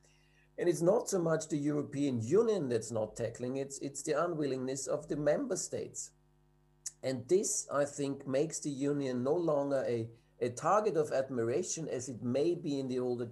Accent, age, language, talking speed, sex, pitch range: German, 50-69, English, 185 wpm, male, 120-155 Hz